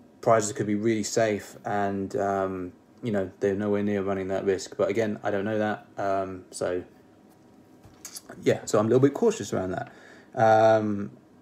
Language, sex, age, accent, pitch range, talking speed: English, male, 20-39, British, 100-115 Hz, 175 wpm